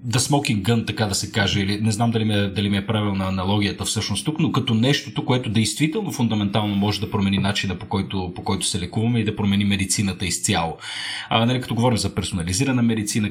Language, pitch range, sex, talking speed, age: Bulgarian, 100-125 Hz, male, 205 wpm, 30-49